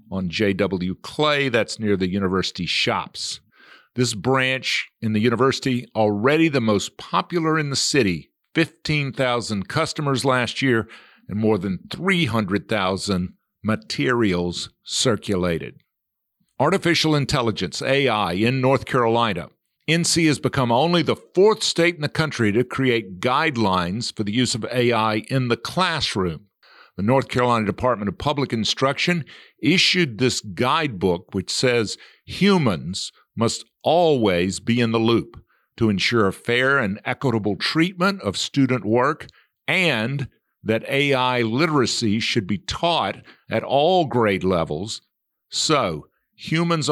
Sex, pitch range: male, 105-135 Hz